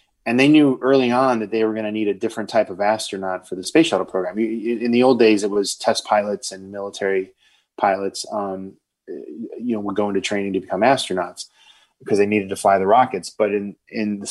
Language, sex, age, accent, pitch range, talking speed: Danish, male, 20-39, American, 105-120 Hz, 220 wpm